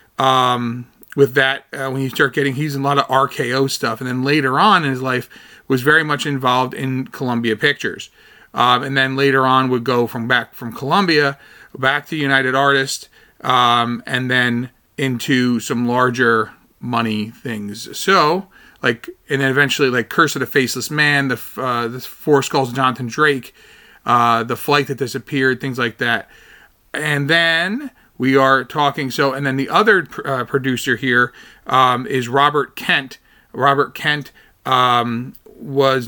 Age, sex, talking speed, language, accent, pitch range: 40-59, male, 165 wpm, English, American, 120-140 Hz